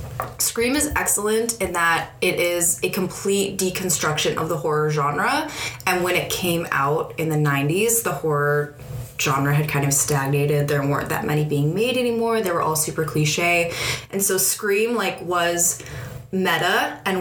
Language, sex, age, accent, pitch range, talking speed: English, female, 20-39, American, 150-190 Hz, 165 wpm